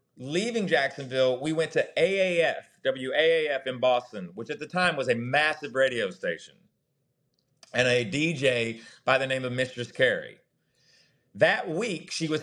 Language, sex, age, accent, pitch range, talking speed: English, male, 40-59, American, 125-170 Hz, 150 wpm